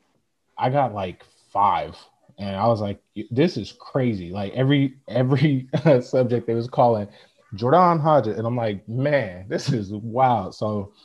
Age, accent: 20-39, American